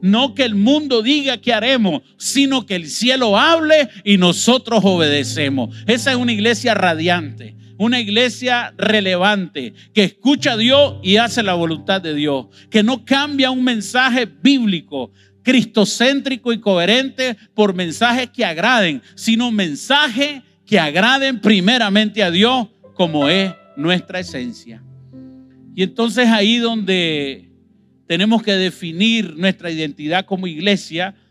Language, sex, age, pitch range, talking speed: Spanish, male, 50-69, 165-235 Hz, 130 wpm